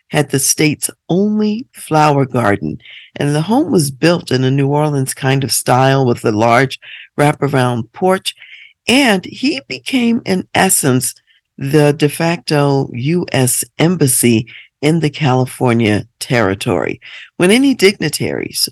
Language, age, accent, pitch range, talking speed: English, 50-69, American, 125-160 Hz, 130 wpm